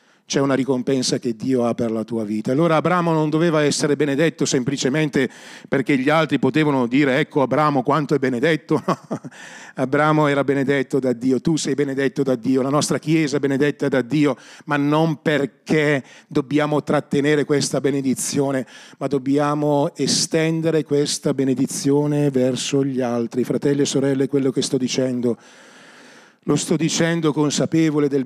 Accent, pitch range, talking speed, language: native, 130-155 Hz, 150 wpm, Italian